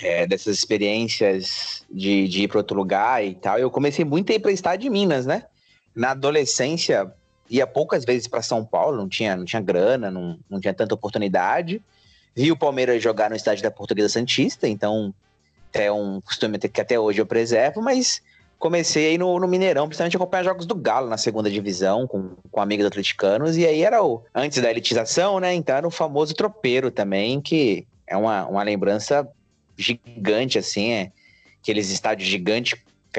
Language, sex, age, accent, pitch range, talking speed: Portuguese, male, 30-49, Brazilian, 105-155 Hz, 180 wpm